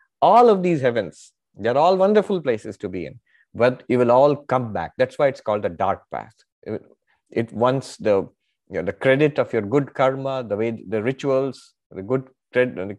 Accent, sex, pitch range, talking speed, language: Indian, male, 105-145 Hz, 195 wpm, English